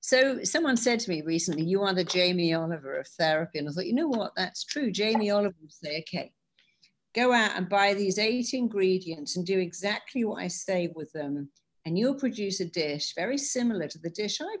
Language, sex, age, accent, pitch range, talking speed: English, female, 50-69, British, 160-205 Hz, 215 wpm